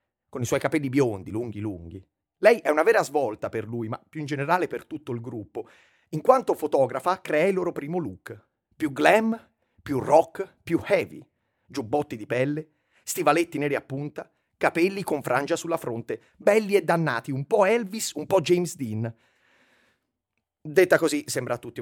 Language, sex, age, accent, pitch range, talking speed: Italian, male, 30-49, native, 115-180 Hz, 175 wpm